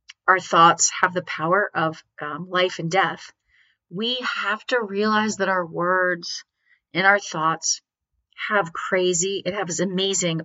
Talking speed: 145 wpm